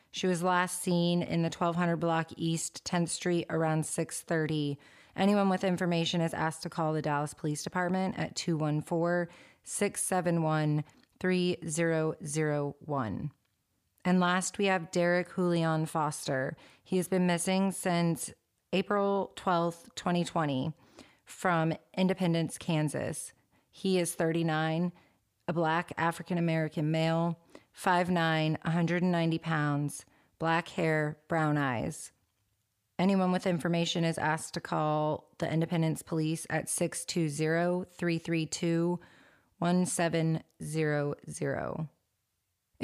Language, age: English, 30-49